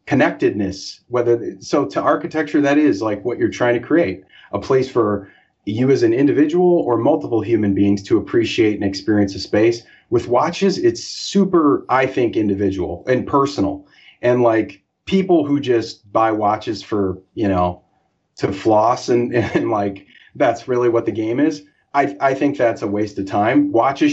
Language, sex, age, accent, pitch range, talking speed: English, male, 30-49, American, 115-165 Hz, 170 wpm